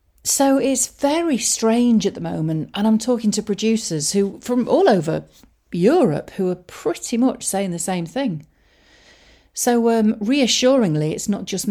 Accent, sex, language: British, female, English